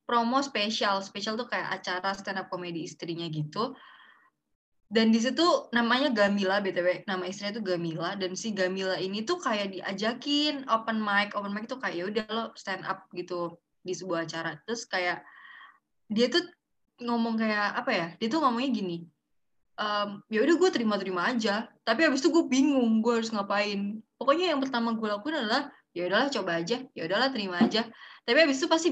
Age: 20-39